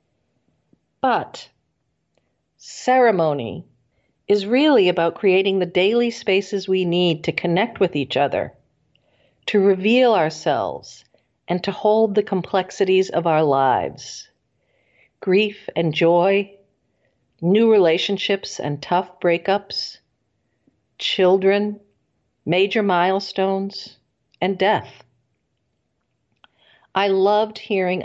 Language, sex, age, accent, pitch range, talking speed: English, female, 50-69, American, 165-220 Hz, 90 wpm